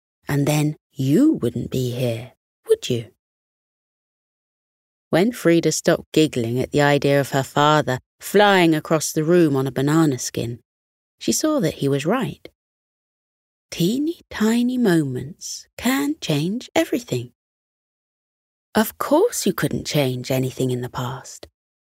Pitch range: 135-220 Hz